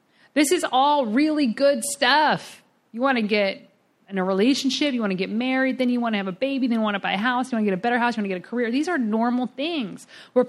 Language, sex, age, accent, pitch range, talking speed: English, female, 40-59, American, 230-285 Hz, 285 wpm